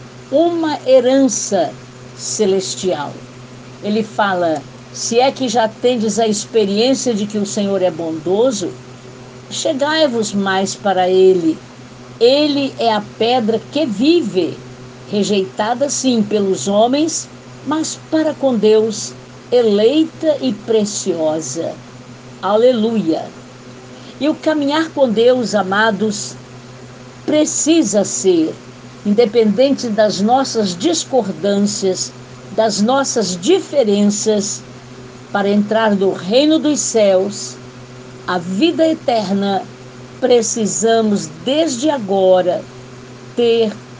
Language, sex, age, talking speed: Portuguese, female, 60-79, 95 wpm